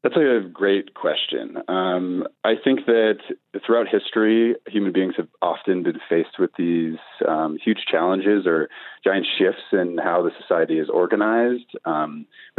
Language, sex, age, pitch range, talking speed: English, male, 30-49, 85-110 Hz, 155 wpm